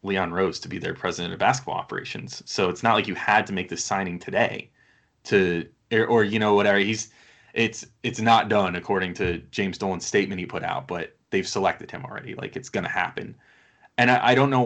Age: 20-39